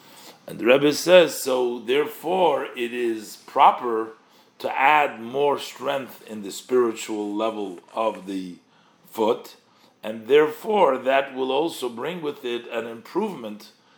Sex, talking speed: male, 130 wpm